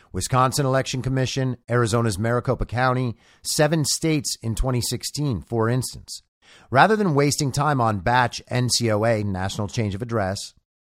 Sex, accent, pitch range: male, American, 110-150 Hz